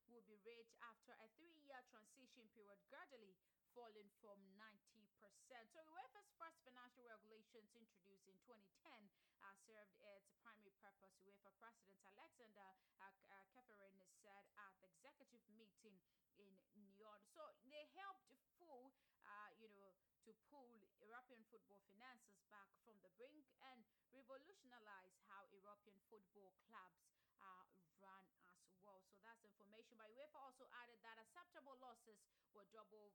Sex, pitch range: female, 200-250 Hz